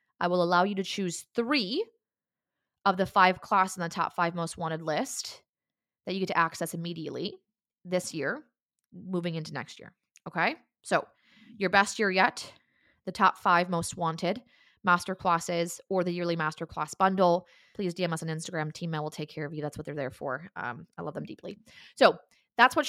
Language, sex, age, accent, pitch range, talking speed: English, female, 20-39, American, 170-215 Hz, 195 wpm